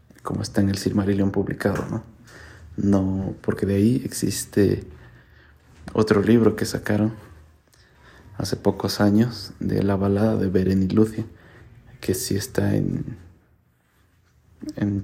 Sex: male